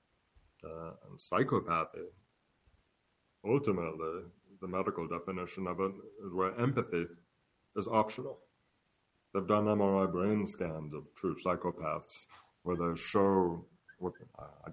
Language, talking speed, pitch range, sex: English, 115 wpm, 85-105 Hz, male